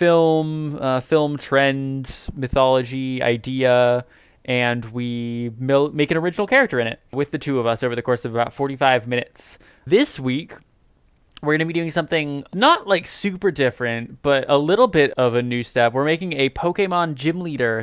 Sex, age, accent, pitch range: male, 20-39, American, 120-140 Hz